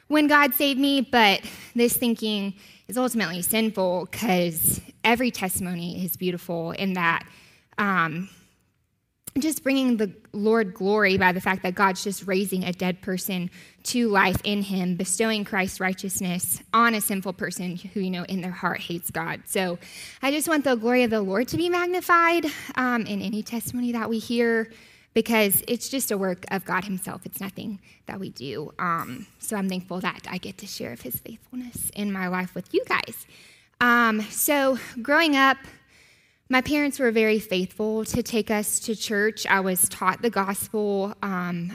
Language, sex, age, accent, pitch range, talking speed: English, female, 20-39, American, 185-230 Hz, 175 wpm